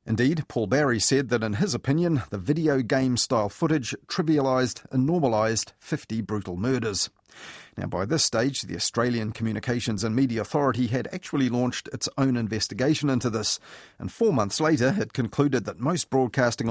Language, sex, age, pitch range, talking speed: English, male, 40-59, 110-135 Hz, 165 wpm